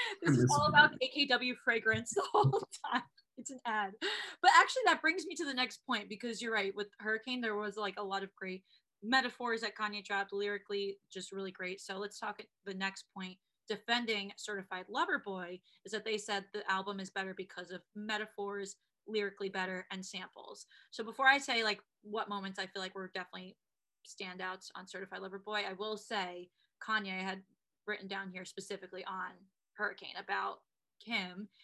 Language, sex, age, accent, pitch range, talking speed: English, female, 20-39, American, 185-215 Hz, 185 wpm